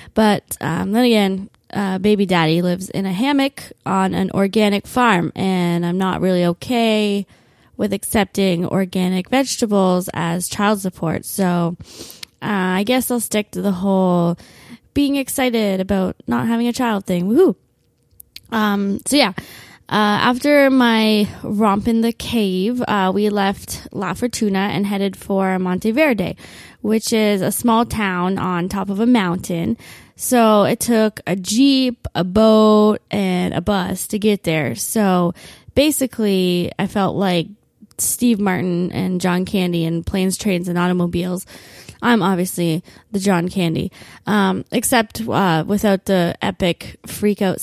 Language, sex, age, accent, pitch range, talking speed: English, female, 20-39, American, 180-220 Hz, 145 wpm